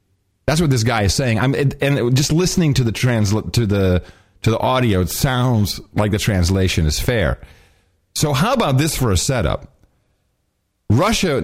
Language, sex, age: English, male, 40-59